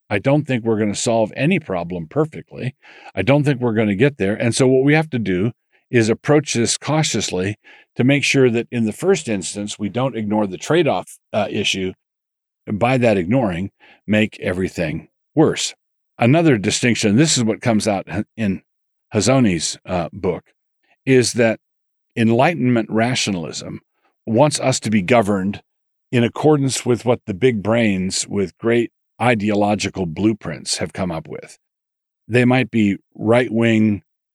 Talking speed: 155 wpm